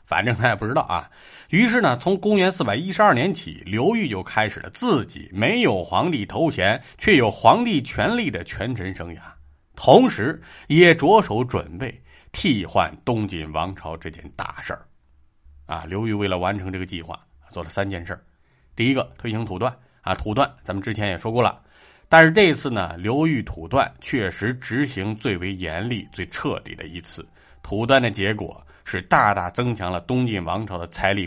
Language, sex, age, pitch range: Chinese, male, 50-69, 95-130 Hz